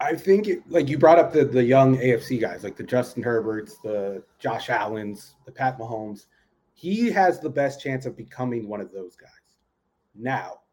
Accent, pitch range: American, 115-150 Hz